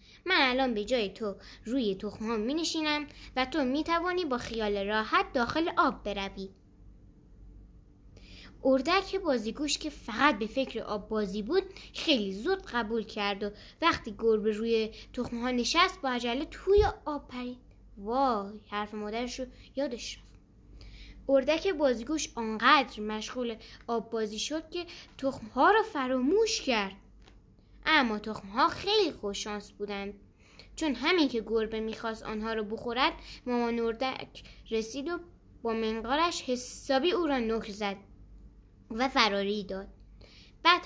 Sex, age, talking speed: female, 10-29, 130 wpm